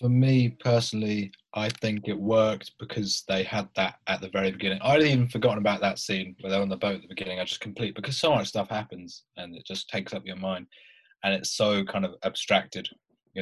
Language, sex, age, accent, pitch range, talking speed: English, male, 30-49, British, 95-115 Hz, 230 wpm